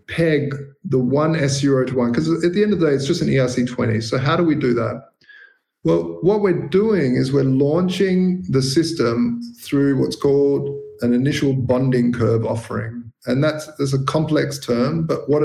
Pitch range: 125-165 Hz